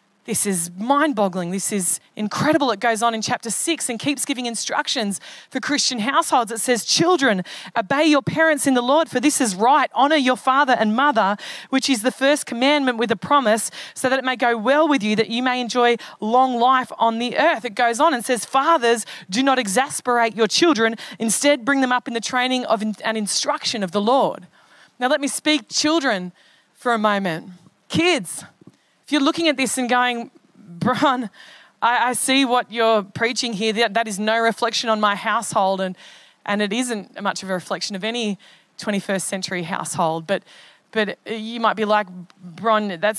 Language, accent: English, Australian